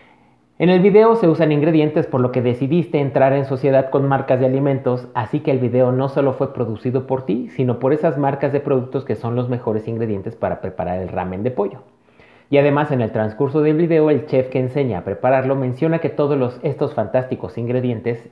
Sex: male